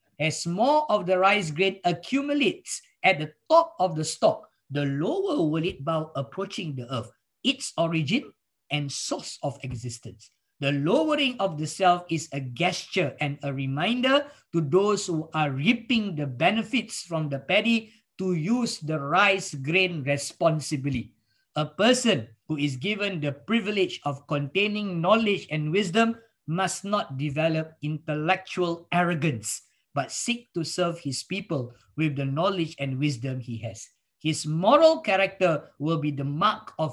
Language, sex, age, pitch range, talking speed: English, male, 50-69, 140-190 Hz, 150 wpm